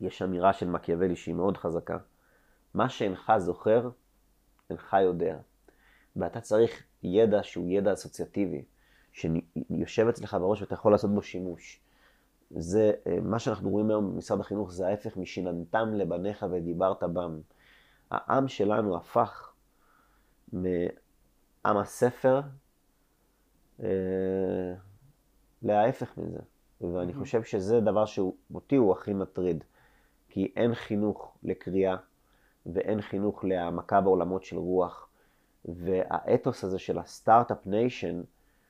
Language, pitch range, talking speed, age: Hebrew, 90-105 Hz, 110 wpm, 30-49